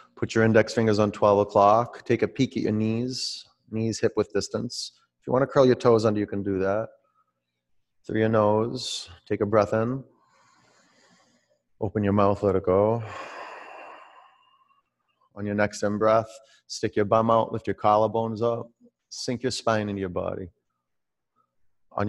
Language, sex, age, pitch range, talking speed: English, male, 30-49, 100-115 Hz, 165 wpm